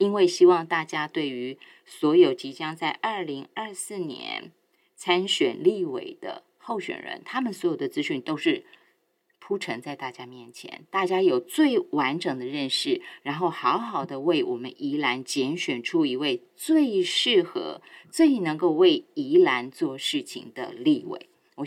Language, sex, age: Chinese, female, 30-49